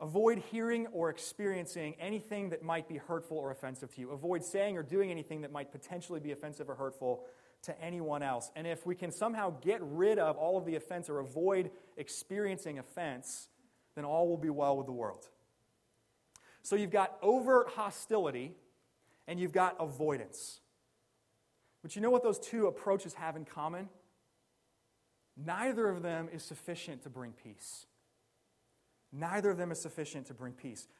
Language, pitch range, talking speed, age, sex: English, 135-180 Hz, 170 wpm, 30-49, male